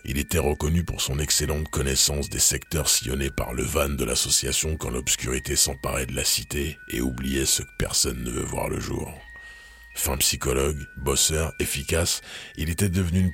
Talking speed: 175 wpm